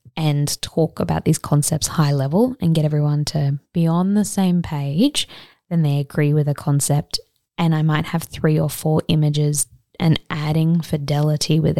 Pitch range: 145-170 Hz